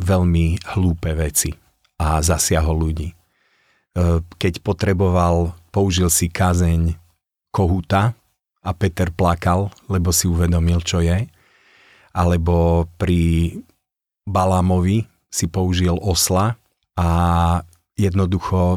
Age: 40-59